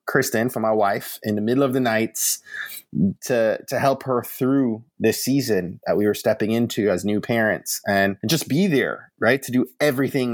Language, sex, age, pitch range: English, male, 20-39, 110-145 Hz